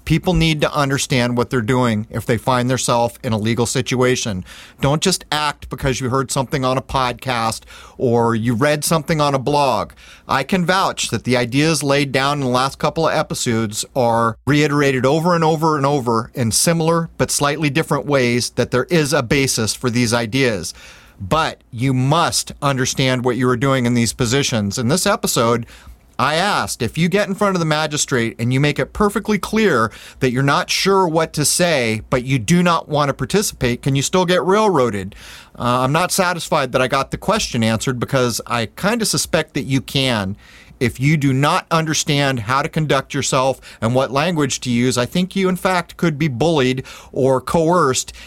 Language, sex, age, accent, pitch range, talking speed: English, male, 40-59, American, 125-160 Hz, 195 wpm